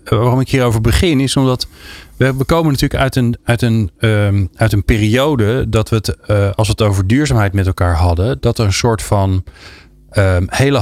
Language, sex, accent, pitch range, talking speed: Dutch, male, Dutch, 90-120 Hz, 175 wpm